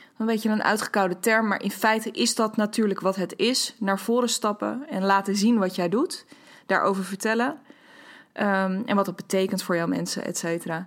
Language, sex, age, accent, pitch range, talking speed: Dutch, female, 20-39, Dutch, 195-245 Hz, 195 wpm